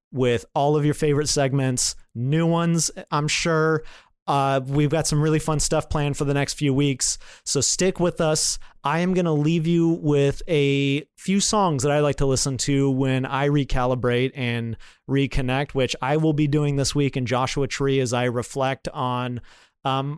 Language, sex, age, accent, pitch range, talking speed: English, male, 30-49, American, 125-150 Hz, 185 wpm